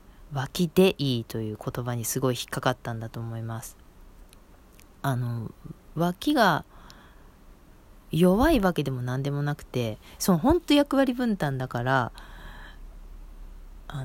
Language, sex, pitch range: Japanese, female, 125-190 Hz